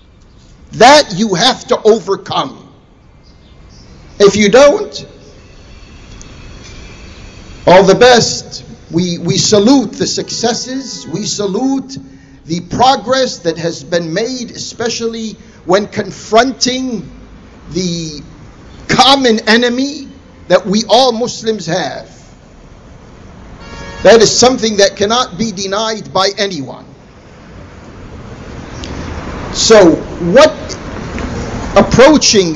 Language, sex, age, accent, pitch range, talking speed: English, male, 50-69, American, 165-240 Hz, 85 wpm